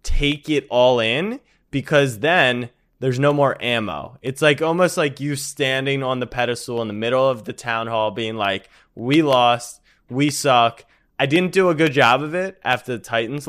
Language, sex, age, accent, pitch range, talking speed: English, male, 20-39, American, 105-145 Hz, 190 wpm